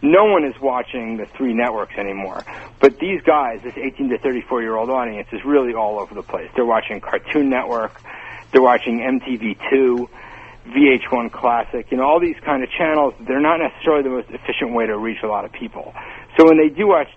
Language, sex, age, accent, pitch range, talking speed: English, male, 60-79, American, 125-165 Hz, 205 wpm